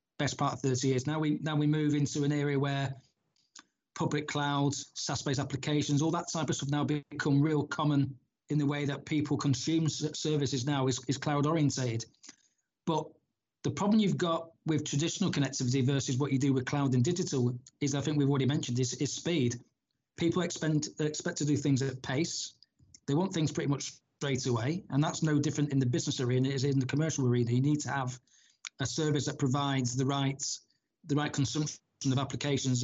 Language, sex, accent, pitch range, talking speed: English, male, British, 135-150 Hz, 200 wpm